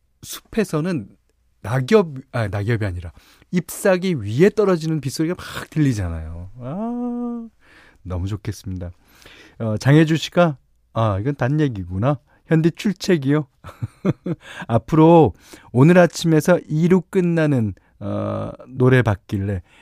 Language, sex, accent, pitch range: Korean, male, native, 105-160 Hz